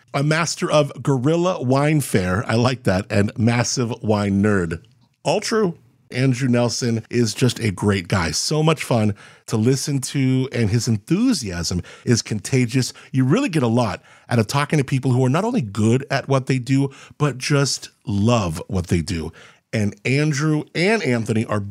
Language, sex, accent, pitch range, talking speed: English, male, American, 110-150 Hz, 175 wpm